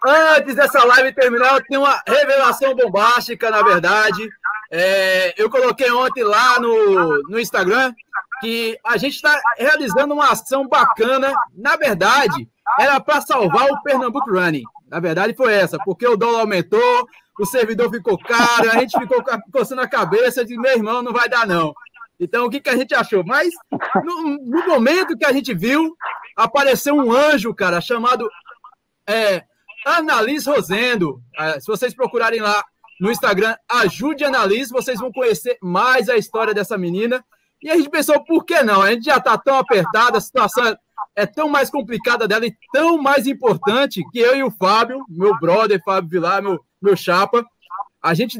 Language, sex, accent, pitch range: Portuguese, male, Brazilian, 215-280 Hz